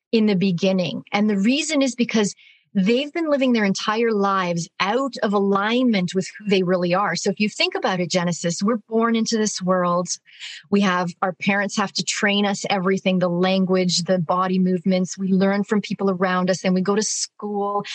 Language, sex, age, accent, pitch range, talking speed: English, female, 30-49, American, 190-230 Hz, 195 wpm